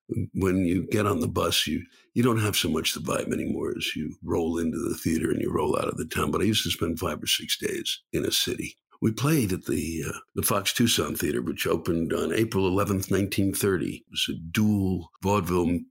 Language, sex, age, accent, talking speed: English, male, 60-79, American, 225 wpm